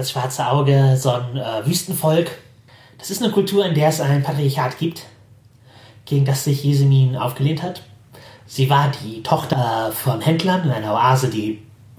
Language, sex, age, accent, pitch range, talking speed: German, male, 30-49, German, 125-155 Hz, 165 wpm